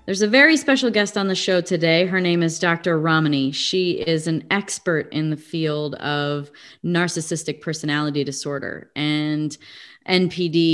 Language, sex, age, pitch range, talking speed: English, female, 30-49, 145-170 Hz, 150 wpm